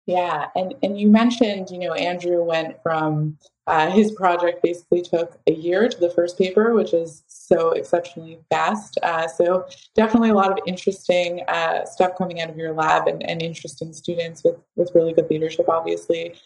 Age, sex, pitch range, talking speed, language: 20-39, female, 170-200 Hz, 180 wpm, English